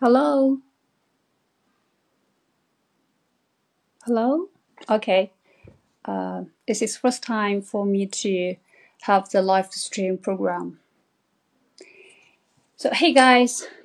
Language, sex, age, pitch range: Chinese, female, 30-49, 185-240 Hz